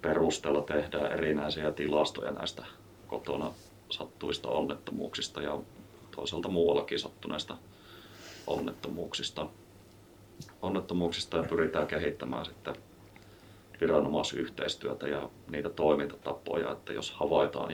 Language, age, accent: Finnish, 30-49, native